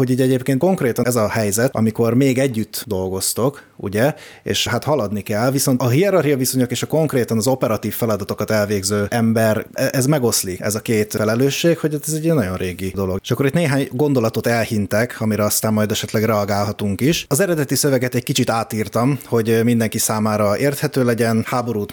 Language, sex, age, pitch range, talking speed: Hungarian, male, 30-49, 105-135 Hz, 175 wpm